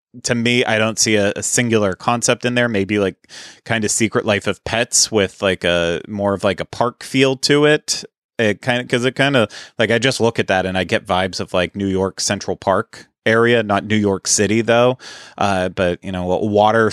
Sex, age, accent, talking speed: male, 30-49, American, 225 wpm